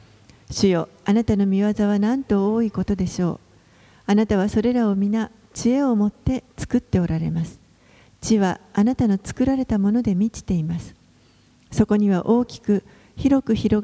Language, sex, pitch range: Japanese, female, 175-220 Hz